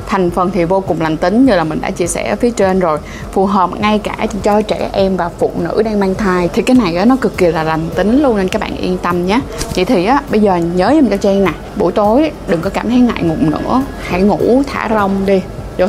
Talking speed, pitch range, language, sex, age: 255 wpm, 170-215 Hz, Vietnamese, female, 20-39